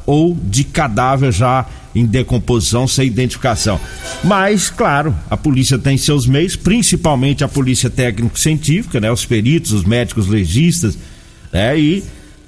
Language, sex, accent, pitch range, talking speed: Portuguese, male, Brazilian, 110-145 Hz, 135 wpm